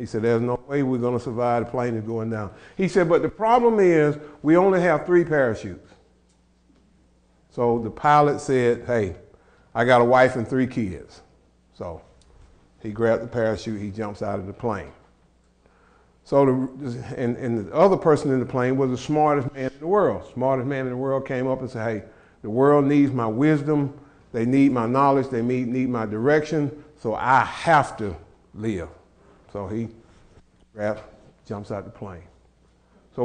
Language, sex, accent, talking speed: English, male, American, 180 wpm